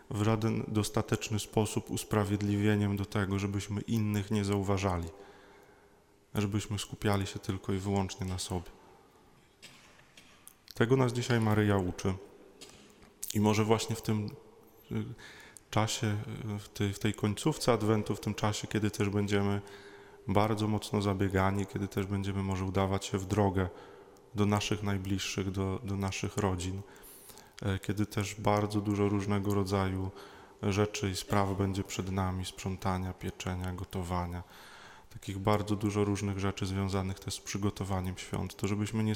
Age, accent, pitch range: 20-39, native, 100-110 Hz